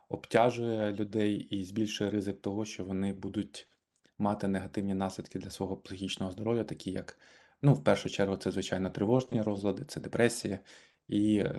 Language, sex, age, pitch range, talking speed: Ukrainian, male, 20-39, 95-110 Hz, 150 wpm